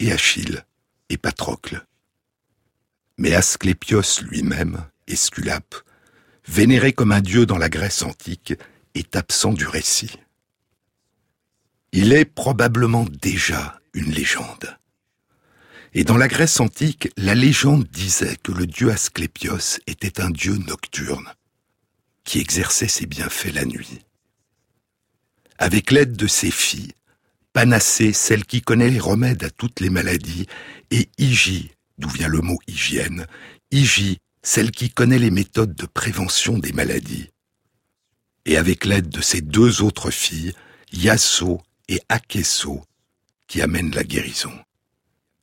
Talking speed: 125 wpm